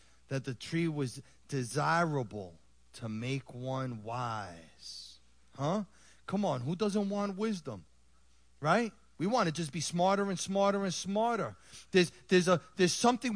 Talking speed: 145 wpm